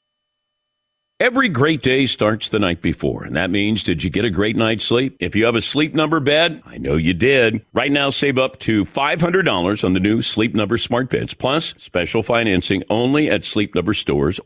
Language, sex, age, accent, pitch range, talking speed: English, male, 50-69, American, 105-145 Hz, 205 wpm